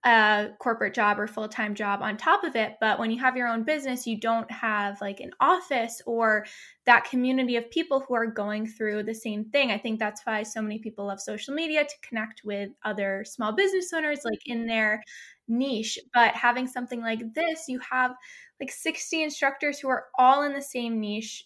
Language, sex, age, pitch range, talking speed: English, female, 10-29, 215-260 Hz, 205 wpm